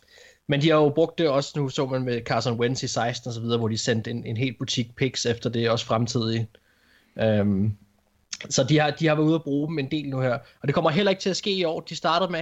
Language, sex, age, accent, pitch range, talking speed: Danish, male, 20-39, native, 120-160 Hz, 270 wpm